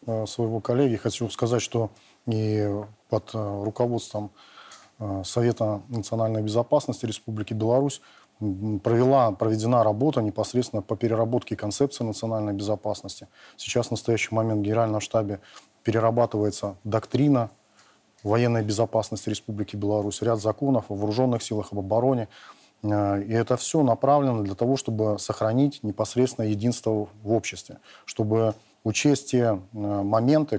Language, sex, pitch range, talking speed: Russian, male, 105-120 Hz, 115 wpm